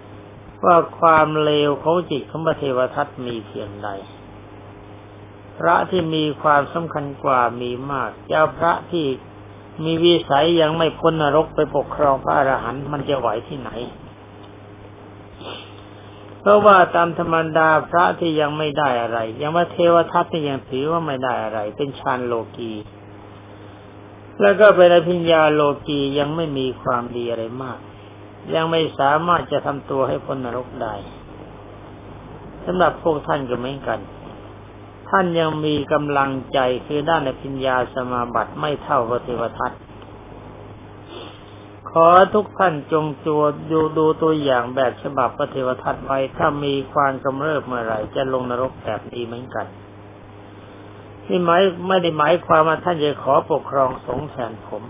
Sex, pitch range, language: male, 105-155 Hz, Thai